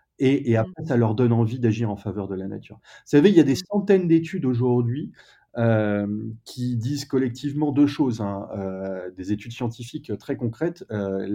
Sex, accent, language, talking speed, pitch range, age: male, French, French, 190 wpm, 105-135 Hz, 30-49